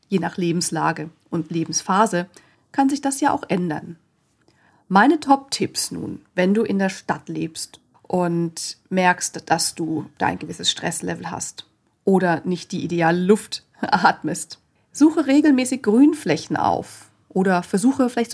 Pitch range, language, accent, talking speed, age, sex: 170-225 Hz, German, German, 135 wpm, 40-59, female